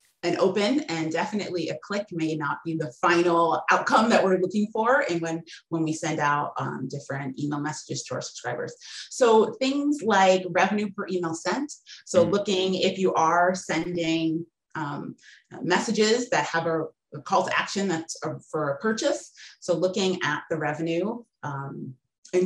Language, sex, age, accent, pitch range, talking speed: English, female, 30-49, American, 160-205 Hz, 160 wpm